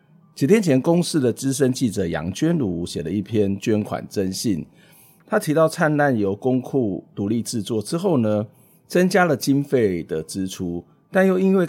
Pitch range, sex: 95-150 Hz, male